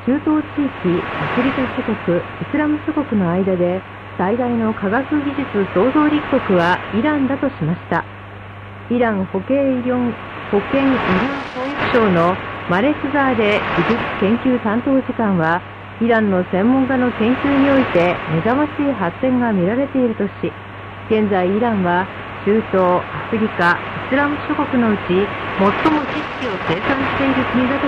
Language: Korean